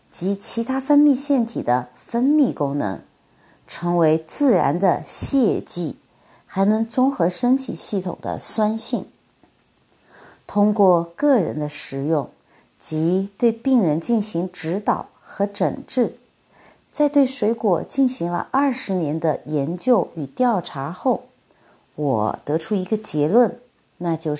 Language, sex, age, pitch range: Chinese, female, 50-69, 165-245 Hz